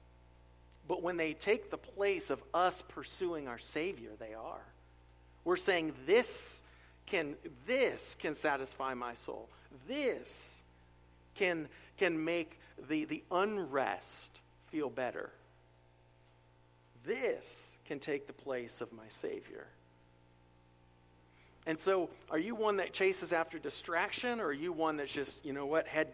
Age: 50-69